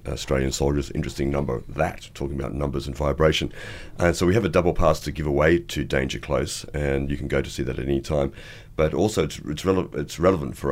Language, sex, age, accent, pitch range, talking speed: English, male, 40-59, Australian, 70-85 Hz, 230 wpm